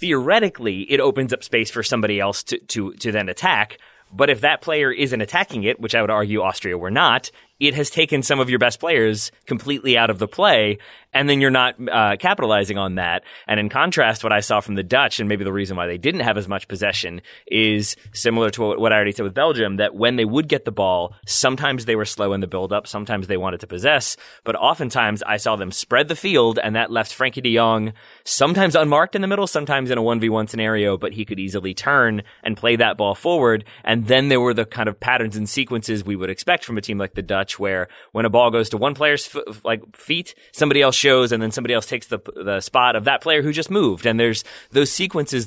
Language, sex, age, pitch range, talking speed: English, male, 20-39, 105-130 Hz, 240 wpm